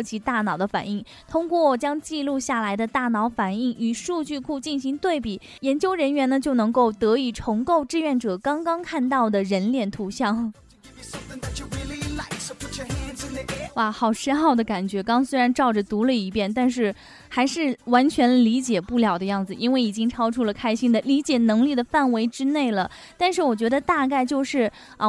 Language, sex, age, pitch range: Chinese, female, 10-29, 220-280 Hz